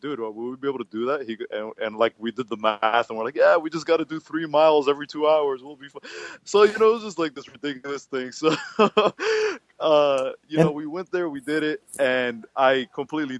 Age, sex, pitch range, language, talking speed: 20-39, male, 110-135 Hz, English, 250 wpm